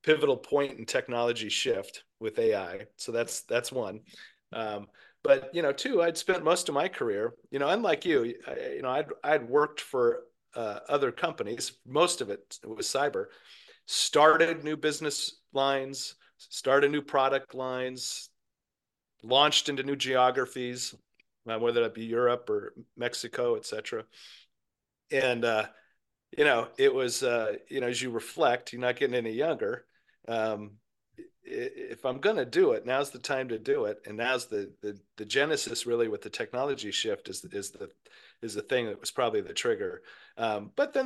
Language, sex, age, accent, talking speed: English, male, 40-59, American, 165 wpm